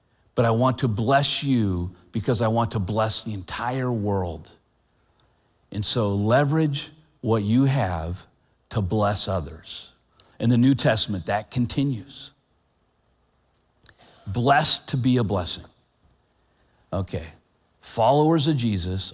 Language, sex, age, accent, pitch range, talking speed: English, male, 50-69, American, 90-130 Hz, 120 wpm